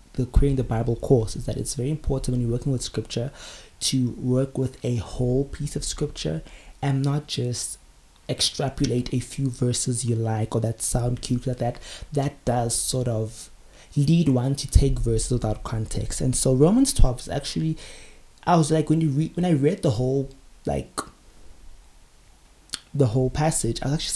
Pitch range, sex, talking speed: 115-140 Hz, male, 180 wpm